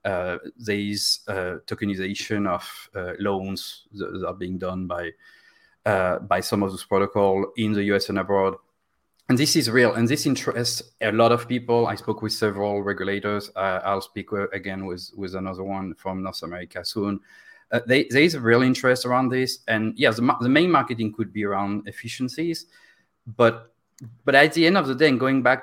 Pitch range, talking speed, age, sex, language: 95-120 Hz, 195 wpm, 30-49, male, English